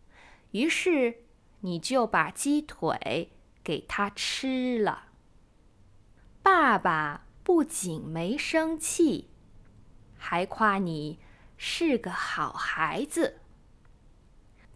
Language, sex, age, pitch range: Chinese, female, 20-39, 180-295 Hz